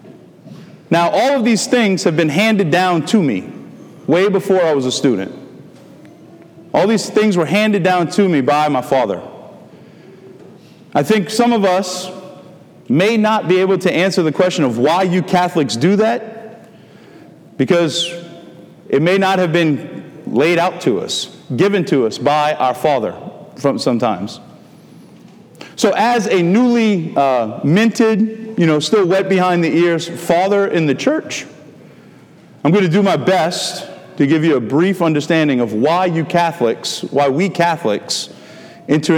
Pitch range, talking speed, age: 165-205 Hz, 155 wpm, 40-59